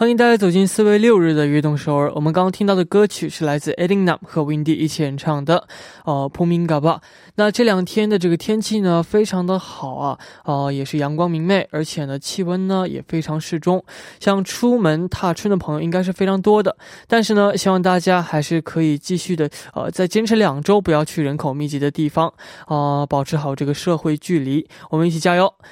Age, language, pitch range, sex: 20-39, Korean, 155-195 Hz, male